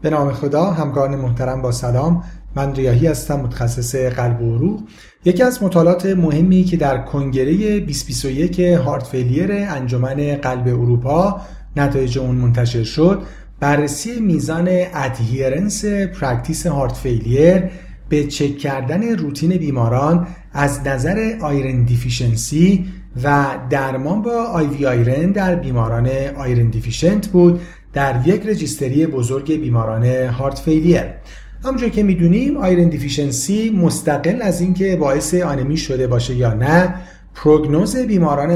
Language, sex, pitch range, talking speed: Persian, male, 130-180 Hz, 120 wpm